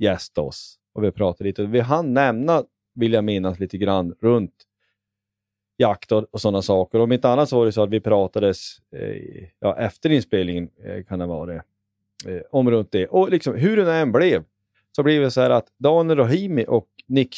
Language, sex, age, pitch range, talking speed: Swedish, male, 30-49, 100-120 Hz, 200 wpm